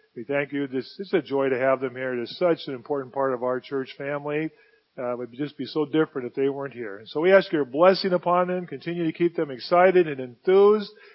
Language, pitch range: English, 140-180 Hz